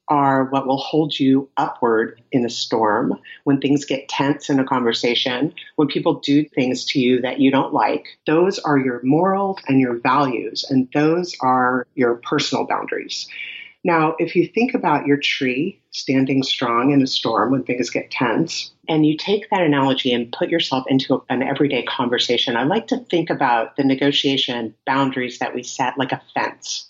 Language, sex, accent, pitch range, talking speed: English, female, American, 135-155 Hz, 180 wpm